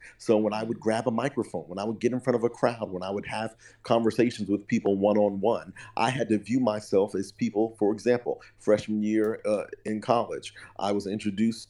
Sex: male